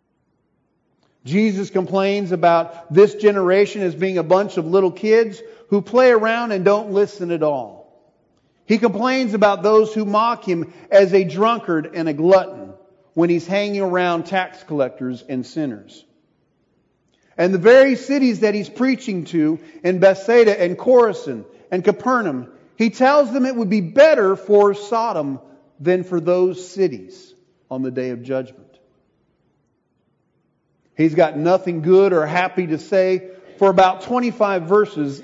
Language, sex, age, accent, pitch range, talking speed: English, male, 40-59, American, 150-205 Hz, 145 wpm